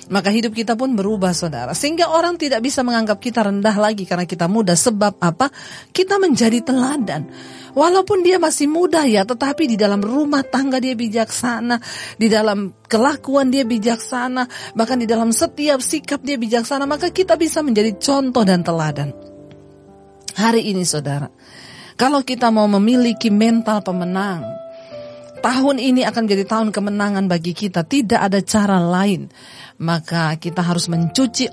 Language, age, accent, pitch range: Japanese, 40-59, Indonesian, 170-240 Hz